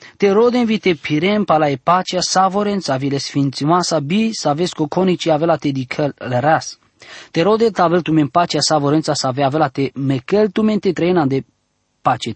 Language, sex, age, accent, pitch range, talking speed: English, male, 20-39, Romanian, 145-195 Hz, 200 wpm